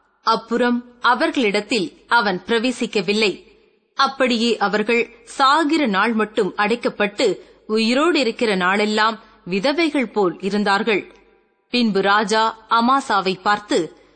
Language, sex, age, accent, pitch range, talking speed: Tamil, female, 20-39, native, 220-285 Hz, 85 wpm